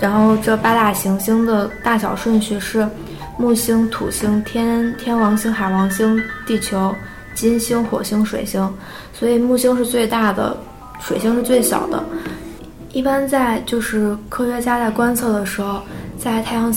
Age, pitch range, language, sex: 20-39, 205-235 Hz, Chinese, female